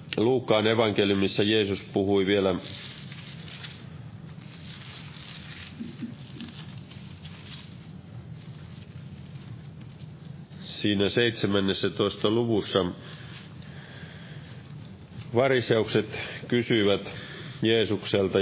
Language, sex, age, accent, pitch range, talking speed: Finnish, male, 40-59, native, 110-145 Hz, 35 wpm